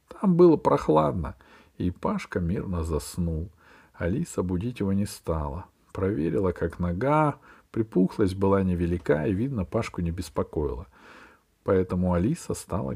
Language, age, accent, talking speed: Russian, 50-69, native, 120 wpm